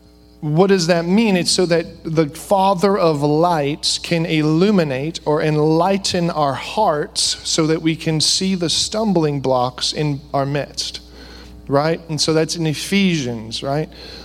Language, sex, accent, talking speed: English, male, American, 145 wpm